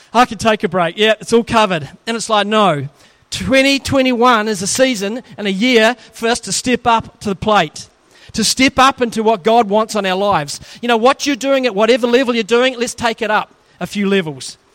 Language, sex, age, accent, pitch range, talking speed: English, male, 40-59, Australian, 195-245 Hz, 225 wpm